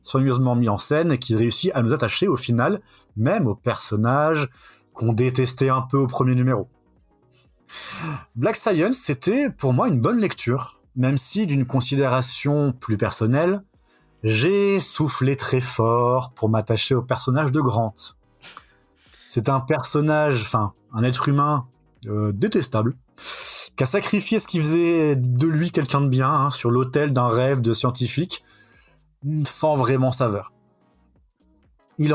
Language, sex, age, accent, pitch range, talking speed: French, male, 30-49, French, 125-155 Hz, 145 wpm